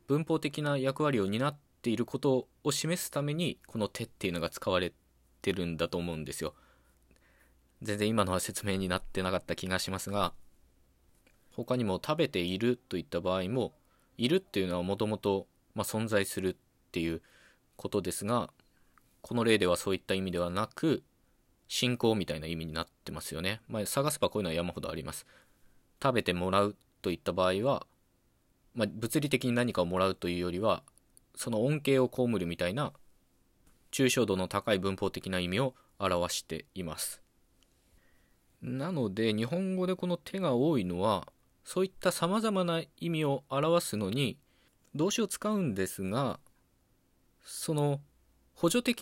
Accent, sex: native, male